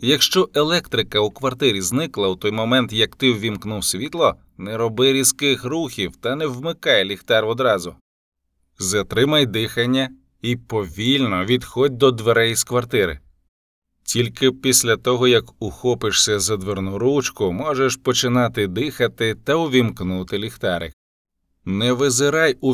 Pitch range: 95-130 Hz